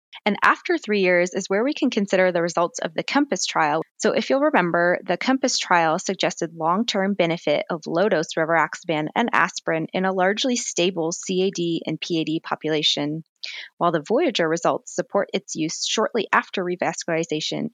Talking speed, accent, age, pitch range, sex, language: 160 wpm, American, 20-39, 165-215 Hz, female, English